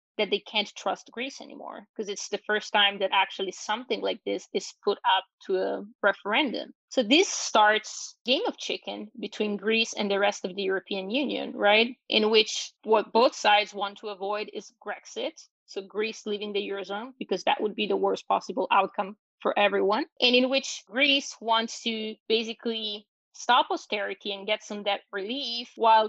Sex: female